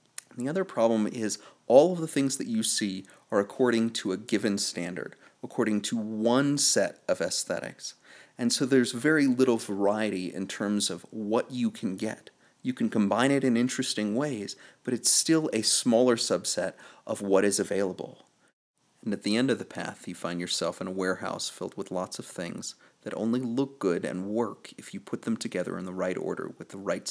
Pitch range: 100-140 Hz